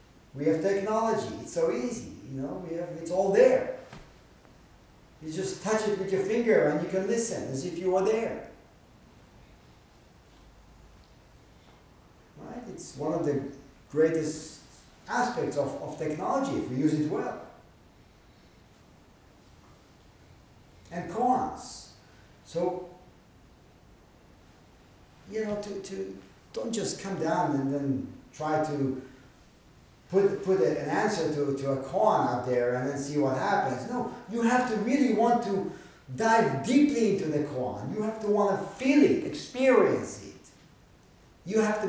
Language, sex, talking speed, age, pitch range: English, male, 140 wpm, 50-69, 145-220 Hz